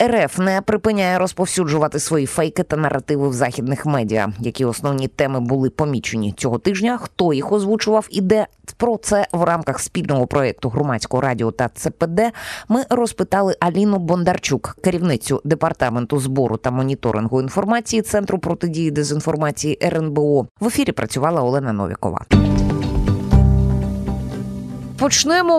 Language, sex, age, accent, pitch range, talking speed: Ukrainian, female, 20-39, native, 145-225 Hz, 125 wpm